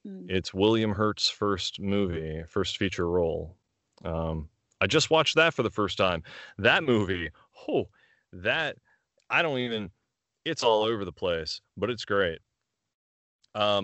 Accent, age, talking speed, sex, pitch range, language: American, 30-49, 145 wpm, male, 95-120 Hz, English